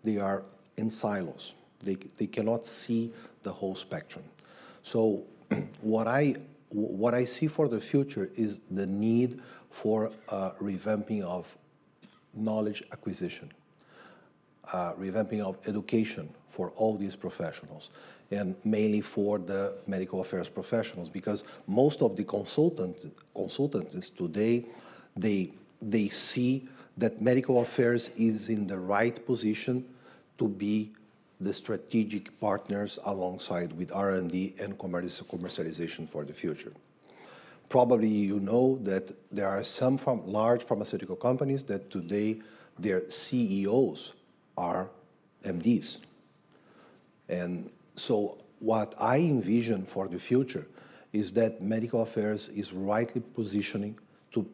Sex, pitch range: male, 100-115 Hz